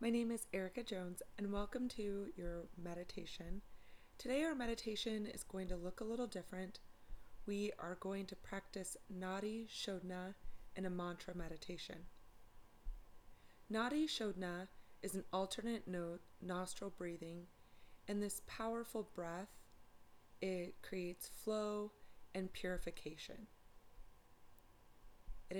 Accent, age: American, 30-49